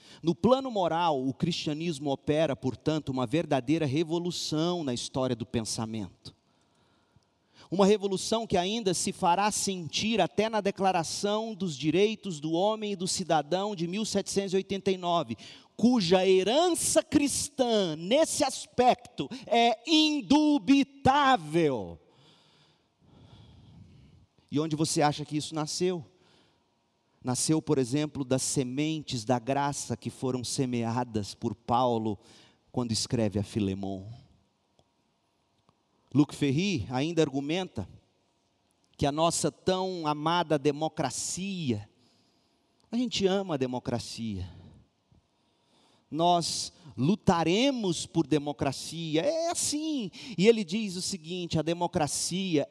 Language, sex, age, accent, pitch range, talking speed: Portuguese, male, 40-59, Brazilian, 130-195 Hz, 105 wpm